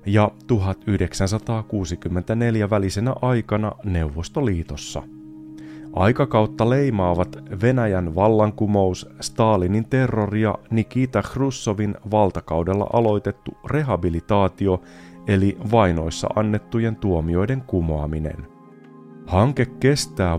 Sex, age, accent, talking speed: male, 30-49, native, 70 wpm